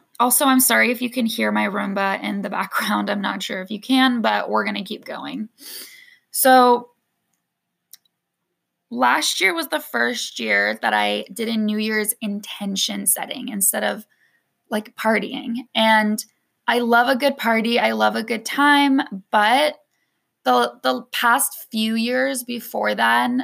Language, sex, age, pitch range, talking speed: English, female, 10-29, 215-260 Hz, 160 wpm